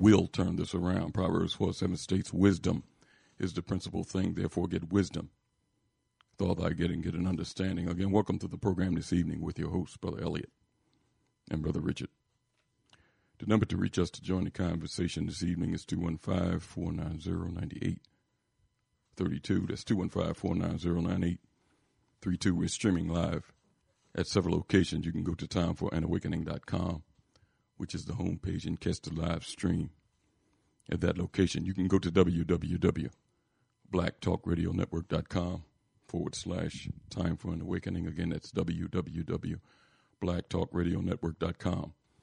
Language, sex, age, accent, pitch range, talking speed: English, male, 50-69, American, 85-95 Hz, 130 wpm